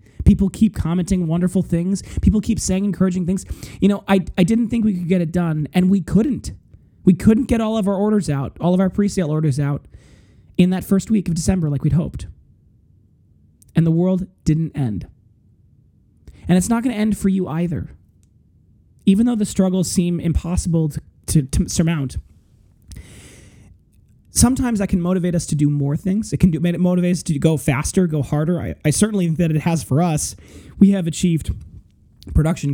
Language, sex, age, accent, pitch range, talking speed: English, male, 20-39, American, 140-185 Hz, 185 wpm